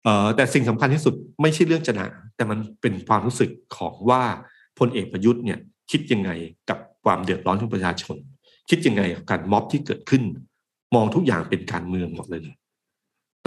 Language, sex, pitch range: Thai, male, 95-125 Hz